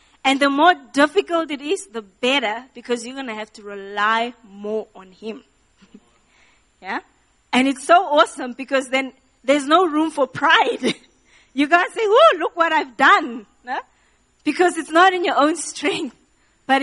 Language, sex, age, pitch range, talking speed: English, female, 20-39, 230-300 Hz, 170 wpm